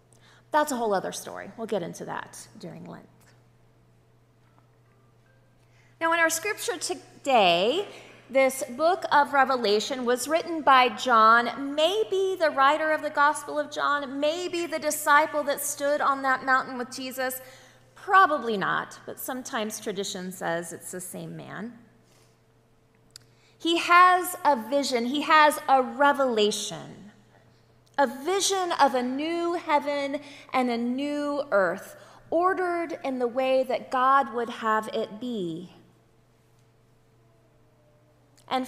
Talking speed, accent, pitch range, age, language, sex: 125 wpm, American, 220-310 Hz, 30-49, English, female